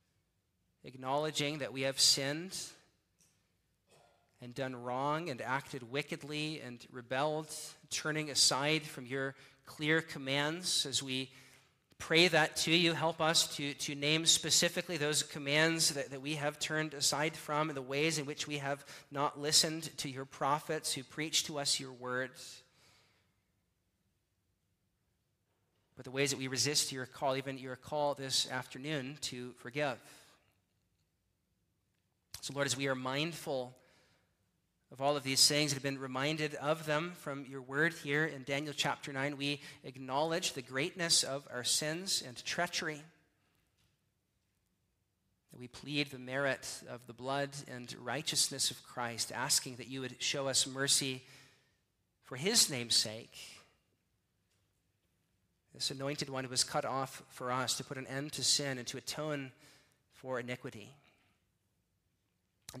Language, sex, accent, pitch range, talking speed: English, male, American, 115-150 Hz, 145 wpm